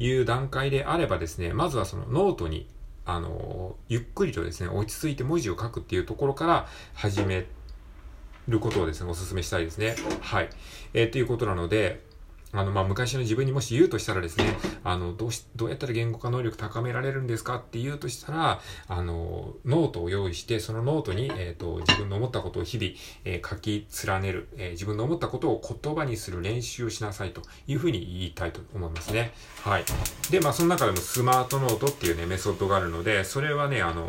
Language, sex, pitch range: Japanese, male, 85-120 Hz